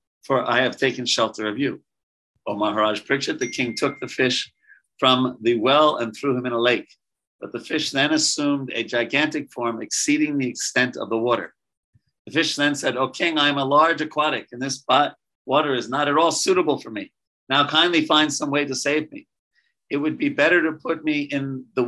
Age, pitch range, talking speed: 50-69, 125-155 Hz, 210 wpm